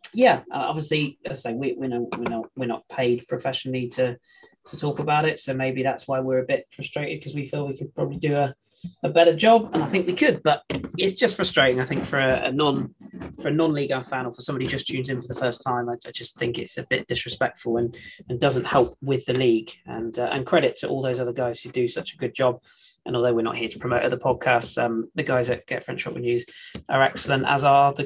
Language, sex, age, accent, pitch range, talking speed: English, male, 20-39, British, 125-160 Hz, 255 wpm